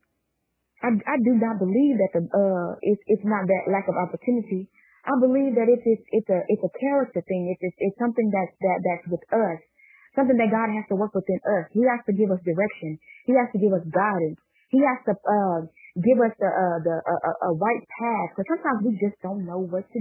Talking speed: 235 wpm